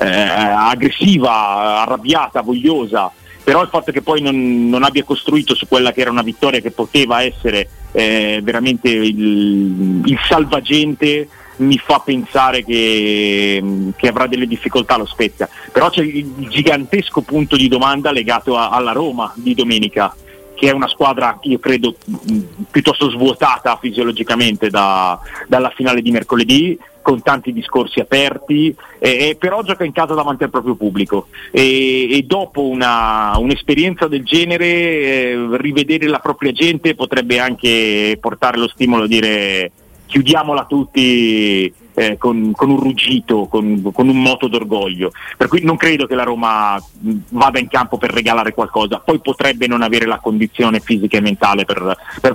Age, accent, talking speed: 30-49, native, 150 wpm